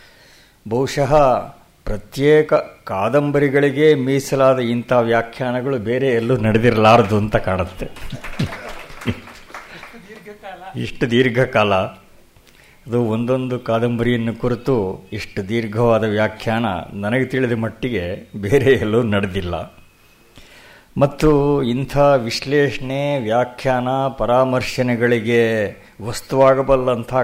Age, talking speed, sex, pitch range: 60-79, 70 wpm, male, 110-130 Hz